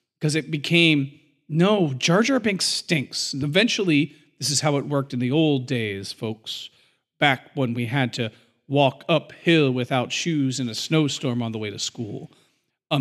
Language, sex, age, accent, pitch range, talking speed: English, male, 40-59, American, 135-175 Hz, 175 wpm